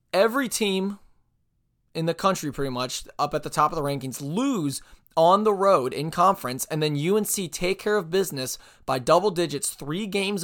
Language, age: English, 20-39